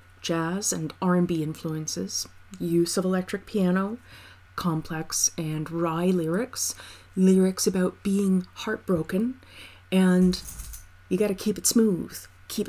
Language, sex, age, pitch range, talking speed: English, female, 30-49, 150-185 Hz, 110 wpm